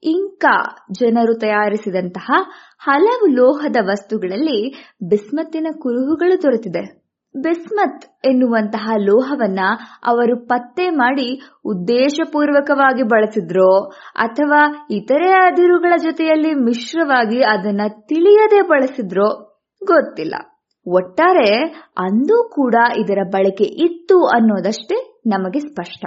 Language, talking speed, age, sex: English, 75 wpm, 20-39, female